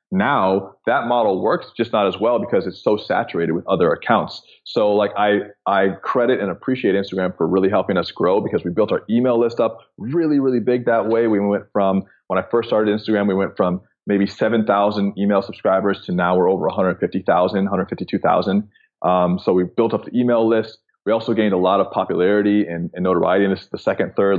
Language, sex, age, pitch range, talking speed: English, male, 20-39, 95-115 Hz, 205 wpm